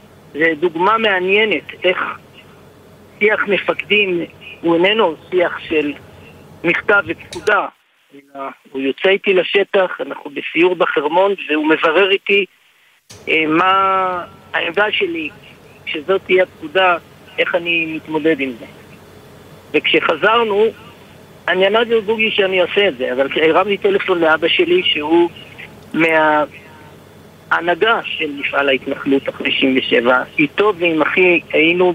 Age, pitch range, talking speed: 50-69, 155-205 Hz, 110 wpm